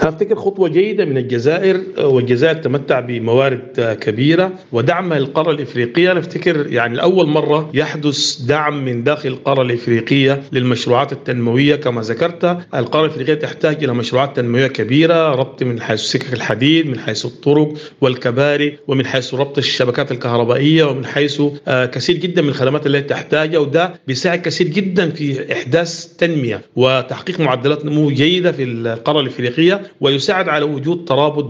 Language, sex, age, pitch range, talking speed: Arabic, male, 50-69, 130-155 Hz, 140 wpm